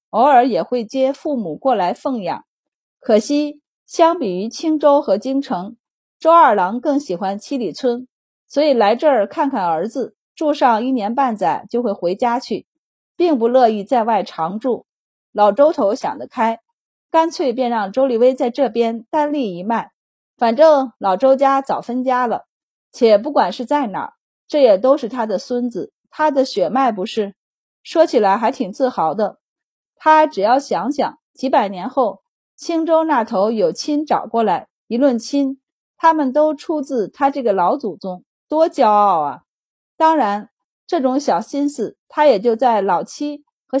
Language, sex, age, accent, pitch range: Chinese, female, 30-49, native, 225-295 Hz